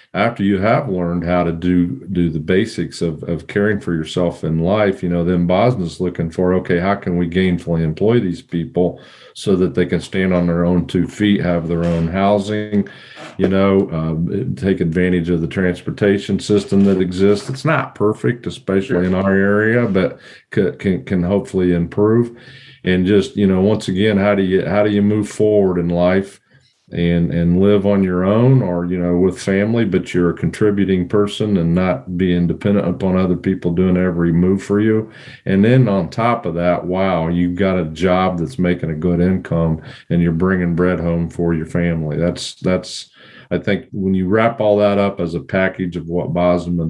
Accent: American